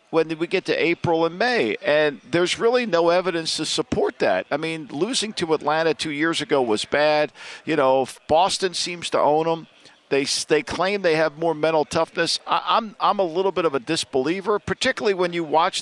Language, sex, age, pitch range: English, male, 50-69, 150-185 Hz